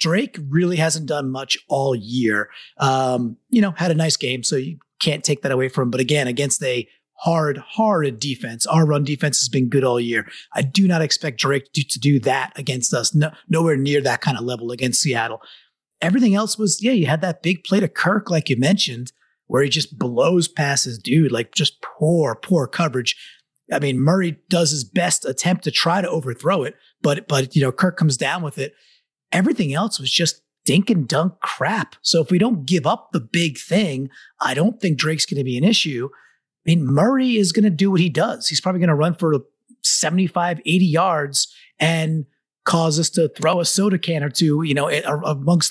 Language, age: English, 30-49